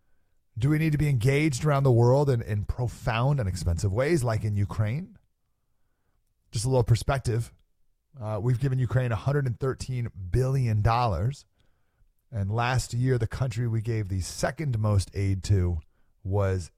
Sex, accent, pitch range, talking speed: male, American, 100-135 Hz, 145 wpm